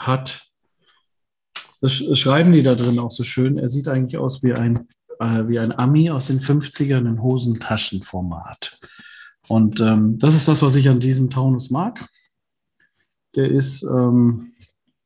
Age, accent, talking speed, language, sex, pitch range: 40-59, German, 145 wpm, German, male, 115-140 Hz